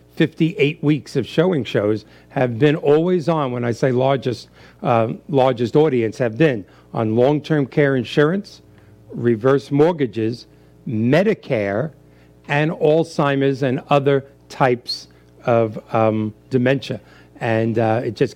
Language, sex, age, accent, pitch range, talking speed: English, male, 60-79, American, 115-140 Hz, 120 wpm